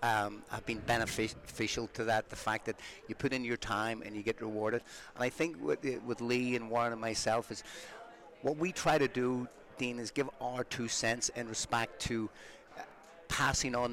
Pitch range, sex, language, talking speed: 115-135 Hz, male, English, 200 wpm